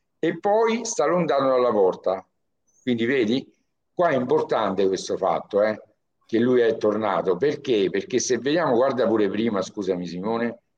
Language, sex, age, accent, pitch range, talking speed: Italian, male, 60-79, native, 90-130 Hz, 150 wpm